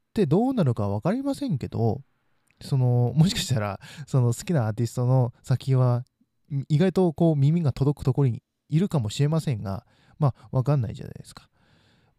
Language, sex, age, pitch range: Japanese, male, 20-39, 110-140 Hz